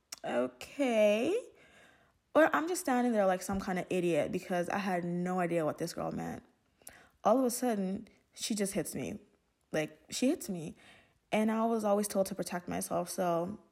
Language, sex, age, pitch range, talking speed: English, female, 20-39, 175-210 Hz, 180 wpm